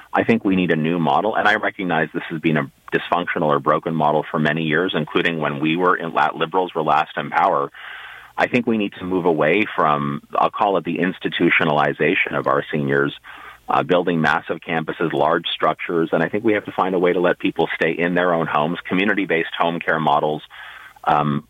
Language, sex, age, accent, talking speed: English, male, 40-59, American, 210 wpm